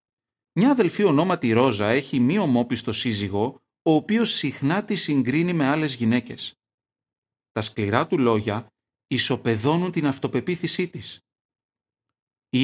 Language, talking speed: Greek, 120 wpm